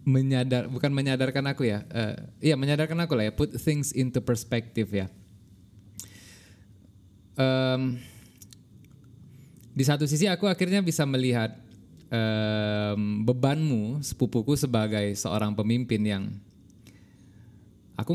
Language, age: Indonesian, 20-39